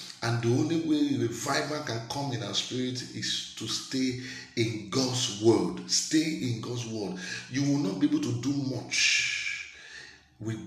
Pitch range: 110-140 Hz